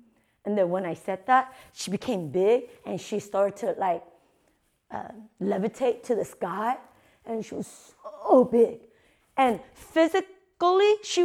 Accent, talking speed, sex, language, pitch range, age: American, 145 wpm, female, English, 200-280 Hz, 30-49